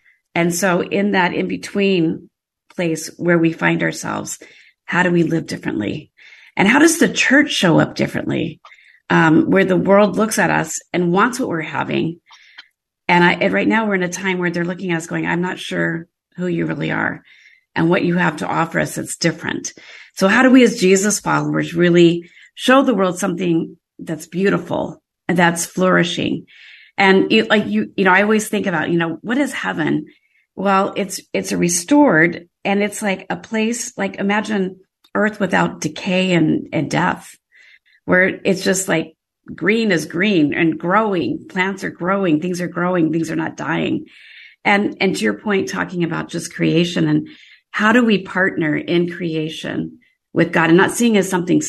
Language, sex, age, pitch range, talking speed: English, female, 40-59, 165-200 Hz, 185 wpm